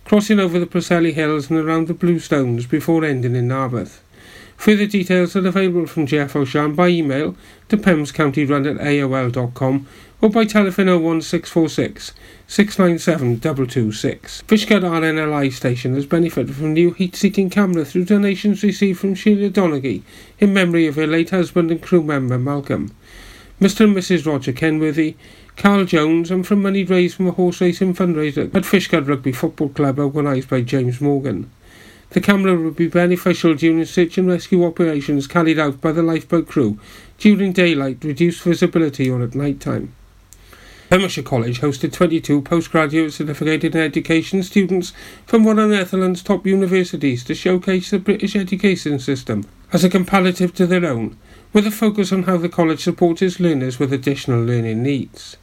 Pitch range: 135-185 Hz